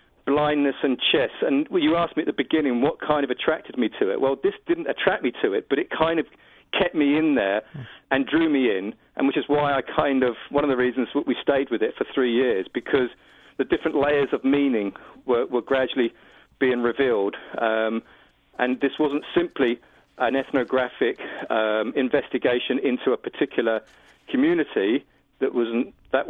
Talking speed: 185 wpm